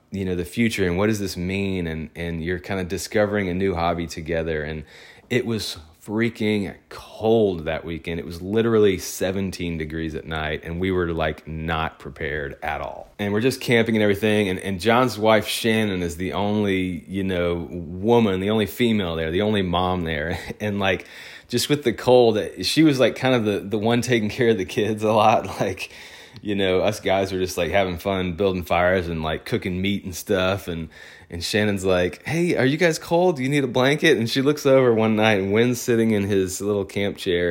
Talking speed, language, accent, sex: 215 wpm, English, American, male